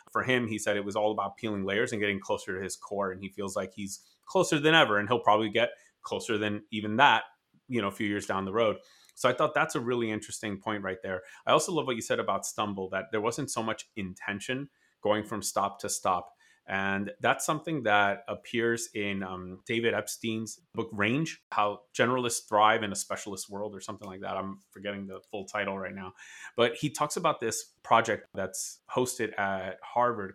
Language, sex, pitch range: English, male, 100-120 Hz